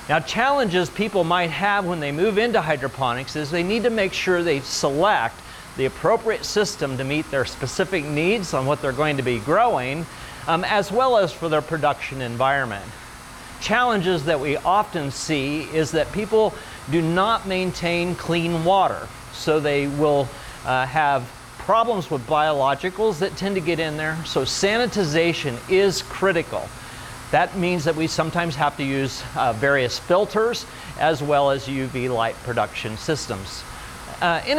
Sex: male